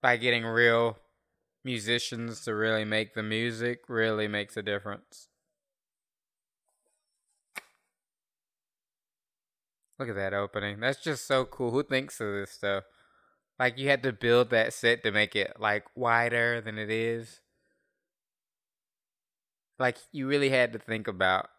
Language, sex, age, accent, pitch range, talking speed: English, male, 20-39, American, 105-120 Hz, 135 wpm